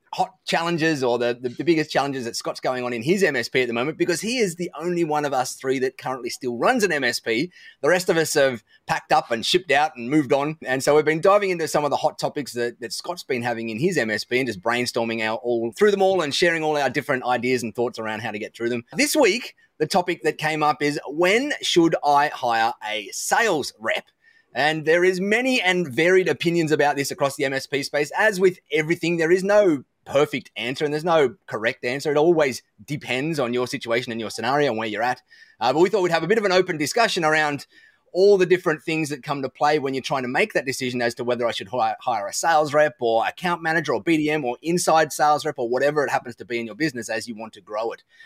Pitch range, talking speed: 130-185 Hz, 250 wpm